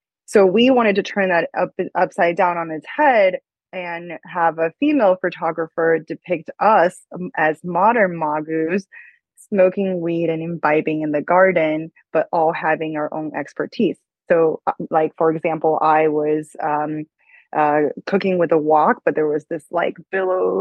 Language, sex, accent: English, female, American